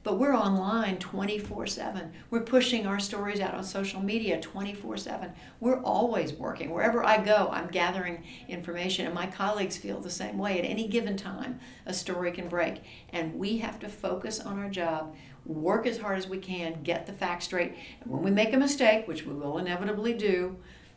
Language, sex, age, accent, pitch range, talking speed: English, female, 60-79, American, 160-215 Hz, 185 wpm